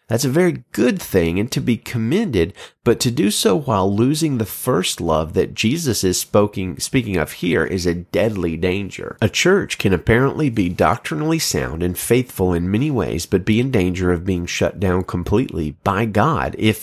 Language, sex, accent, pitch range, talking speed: English, male, American, 90-120 Hz, 185 wpm